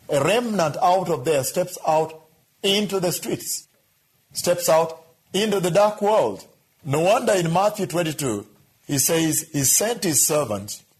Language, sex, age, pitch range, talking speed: English, male, 50-69, 130-175 Hz, 145 wpm